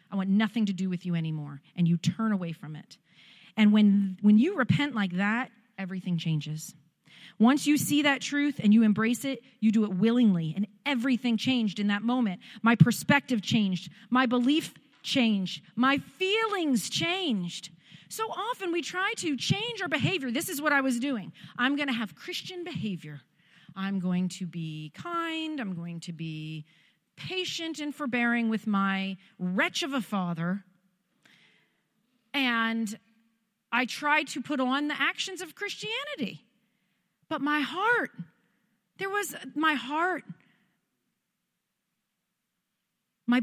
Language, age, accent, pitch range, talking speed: English, 40-59, American, 190-270 Hz, 150 wpm